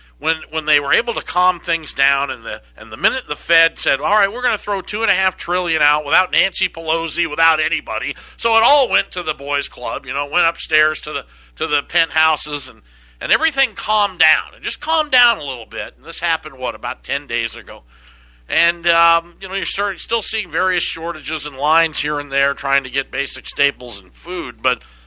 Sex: male